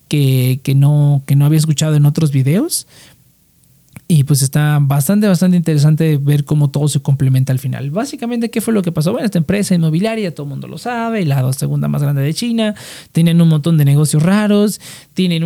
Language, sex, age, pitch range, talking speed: Spanish, male, 40-59, 140-175 Hz, 200 wpm